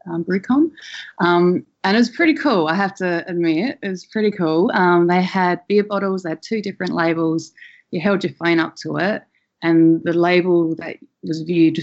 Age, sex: 30-49, female